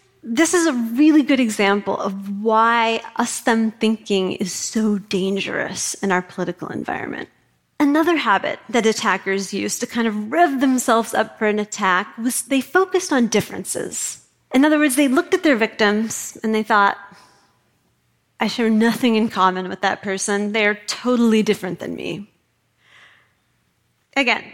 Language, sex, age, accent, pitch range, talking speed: English, female, 30-49, American, 205-255 Hz, 150 wpm